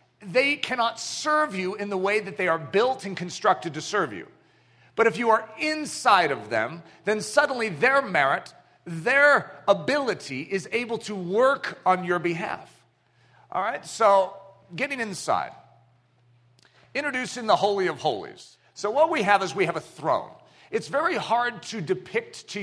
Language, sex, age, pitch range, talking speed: English, male, 40-59, 180-240 Hz, 160 wpm